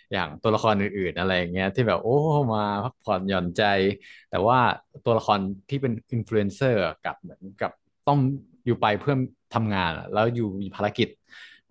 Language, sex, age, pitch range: Thai, male, 20-39, 100-125 Hz